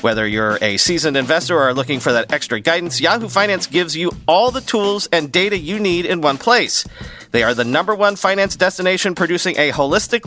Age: 40-59